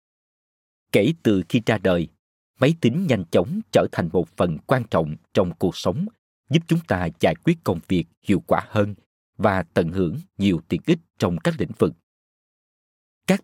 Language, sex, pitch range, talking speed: Vietnamese, male, 90-150 Hz, 175 wpm